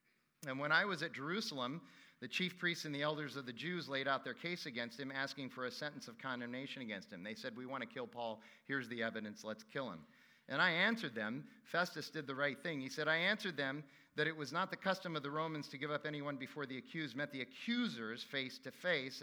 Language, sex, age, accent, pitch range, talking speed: English, male, 40-59, American, 135-170 Hz, 245 wpm